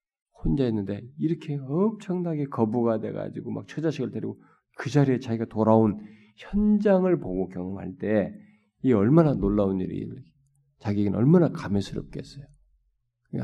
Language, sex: Korean, male